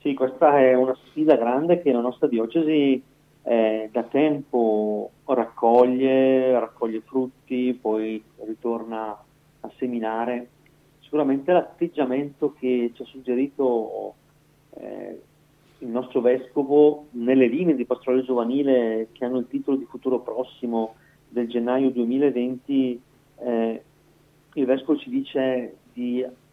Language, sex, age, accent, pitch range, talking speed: Italian, male, 40-59, native, 120-145 Hz, 115 wpm